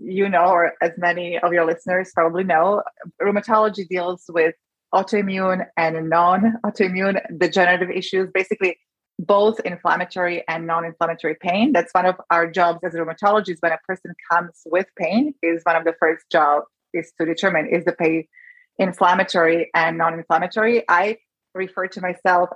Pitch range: 170-200 Hz